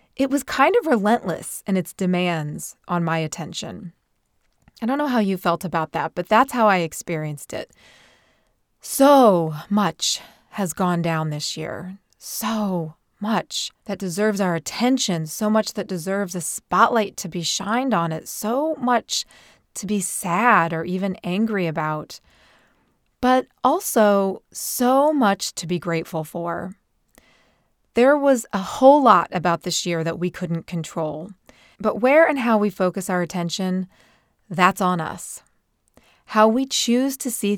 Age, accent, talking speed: 30-49, American, 150 wpm